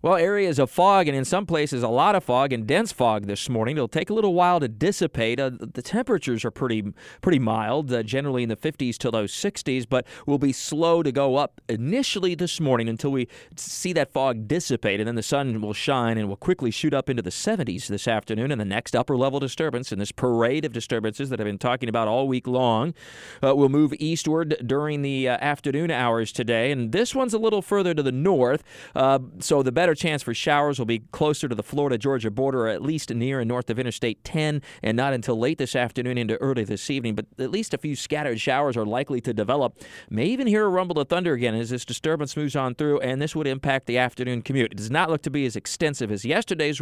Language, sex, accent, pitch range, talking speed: English, male, American, 120-150 Hz, 235 wpm